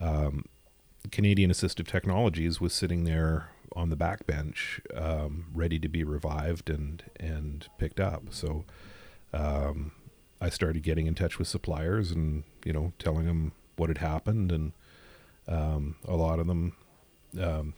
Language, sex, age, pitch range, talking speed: English, male, 40-59, 80-90 Hz, 150 wpm